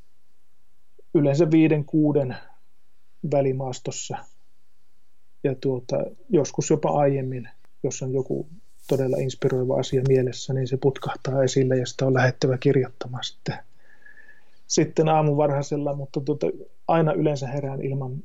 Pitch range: 130-150 Hz